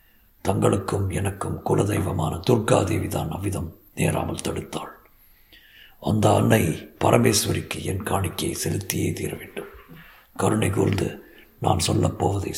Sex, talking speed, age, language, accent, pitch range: male, 95 wpm, 50-69, Tamil, native, 105-130 Hz